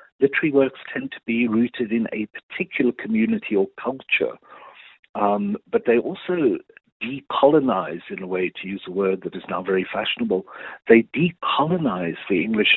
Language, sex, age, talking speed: English, male, 60-79, 155 wpm